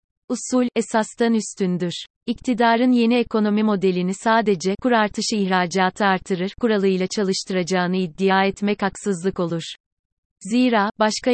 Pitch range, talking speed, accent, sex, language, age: 195-225 Hz, 105 wpm, native, female, Turkish, 30-49